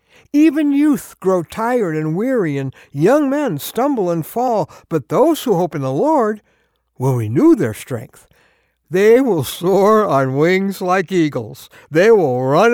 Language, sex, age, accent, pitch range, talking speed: English, male, 60-79, American, 145-230 Hz, 155 wpm